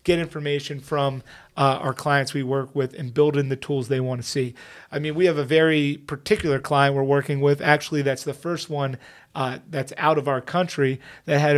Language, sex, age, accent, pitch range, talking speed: English, male, 30-49, American, 135-160 Hz, 220 wpm